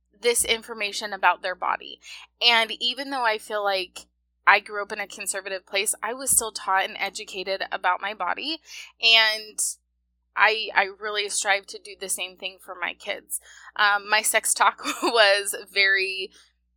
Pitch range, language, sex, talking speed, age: 185-230 Hz, English, female, 165 wpm, 20-39